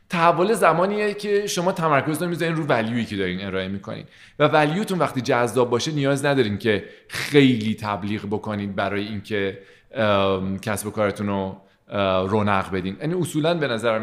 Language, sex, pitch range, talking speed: Persian, male, 105-140 Hz, 155 wpm